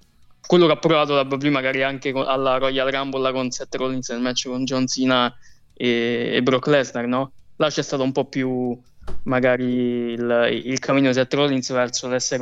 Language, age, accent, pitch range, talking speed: Italian, 20-39, native, 125-140 Hz, 195 wpm